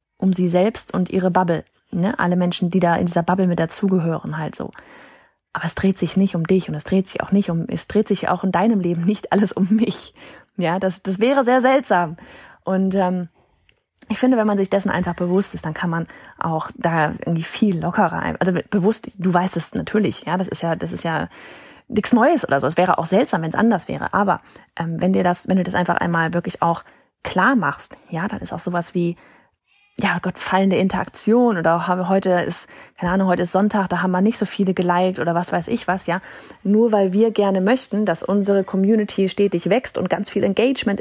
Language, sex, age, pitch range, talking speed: German, female, 30-49, 180-225 Hz, 220 wpm